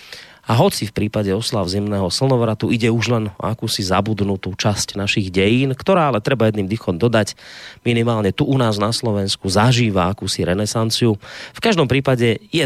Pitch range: 95-125 Hz